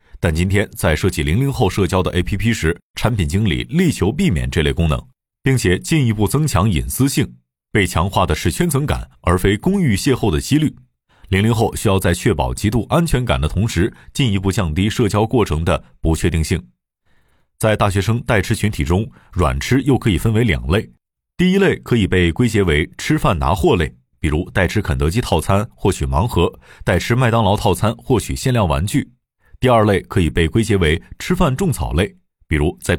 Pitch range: 85-120 Hz